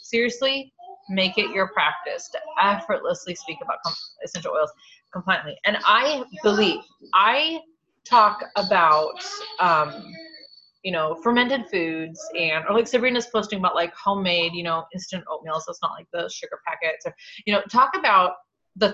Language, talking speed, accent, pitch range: English, 150 wpm, American, 165-250 Hz